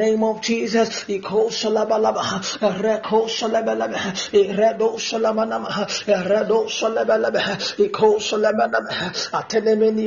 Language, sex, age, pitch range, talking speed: English, male, 20-39, 205-220 Hz, 145 wpm